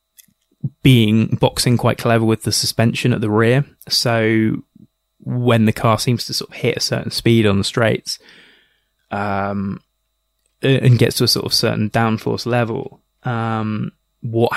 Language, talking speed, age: English, 150 wpm, 20-39